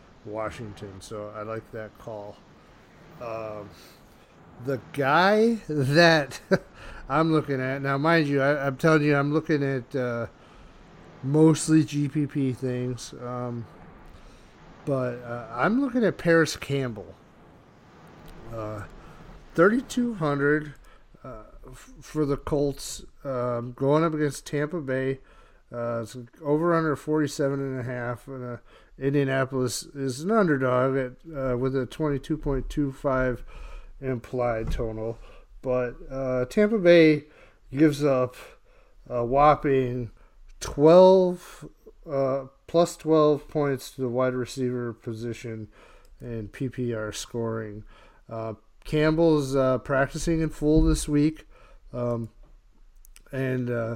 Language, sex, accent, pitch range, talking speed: English, male, American, 120-150 Hz, 110 wpm